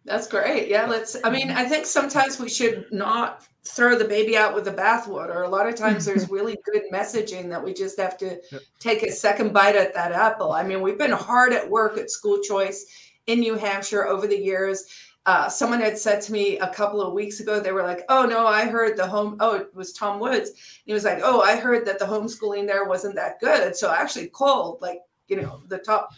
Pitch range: 200-235 Hz